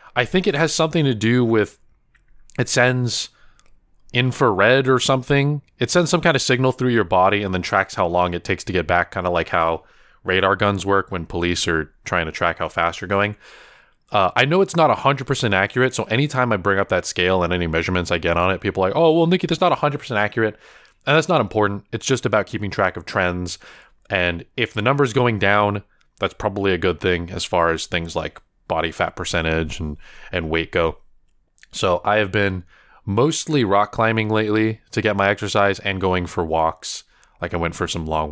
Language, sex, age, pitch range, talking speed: English, male, 20-39, 90-125 Hz, 215 wpm